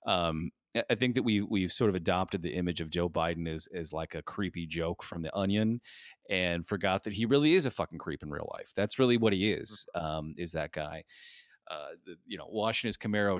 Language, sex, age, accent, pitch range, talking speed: English, male, 30-49, American, 90-130 Hz, 230 wpm